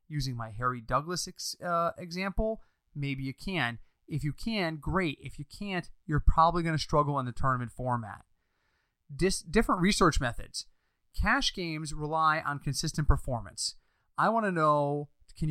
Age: 30-49